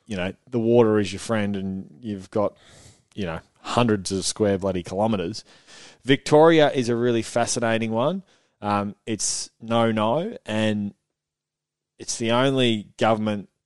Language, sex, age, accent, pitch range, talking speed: English, male, 20-39, Australian, 100-120 Hz, 140 wpm